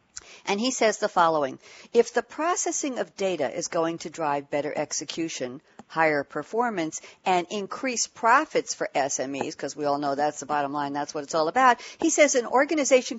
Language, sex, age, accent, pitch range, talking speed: English, female, 60-79, American, 160-235 Hz, 180 wpm